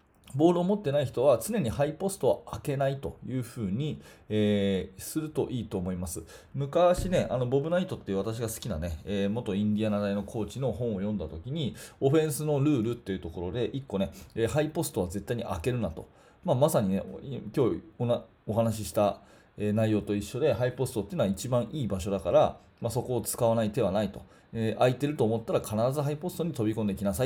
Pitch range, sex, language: 105-145 Hz, male, Japanese